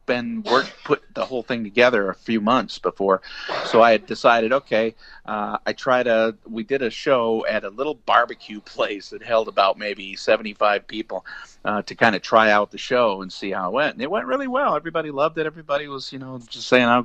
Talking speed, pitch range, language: 220 wpm, 110-150 Hz, English